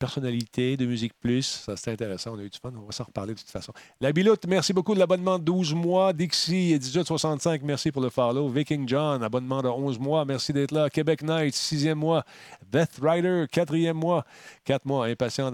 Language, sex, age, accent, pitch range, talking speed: French, male, 40-59, Canadian, 110-140 Hz, 210 wpm